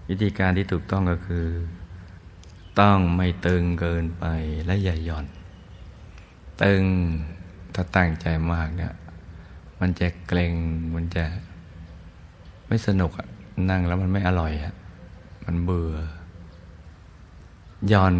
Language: Thai